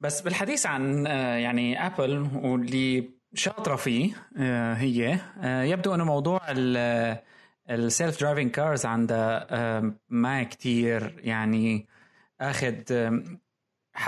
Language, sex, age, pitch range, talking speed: Arabic, male, 20-39, 120-145 Hz, 85 wpm